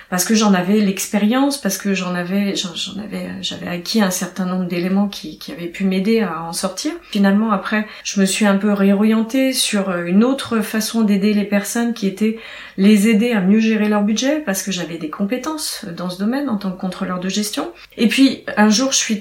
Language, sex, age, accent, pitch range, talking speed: French, female, 30-49, French, 195-235 Hz, 215 wpm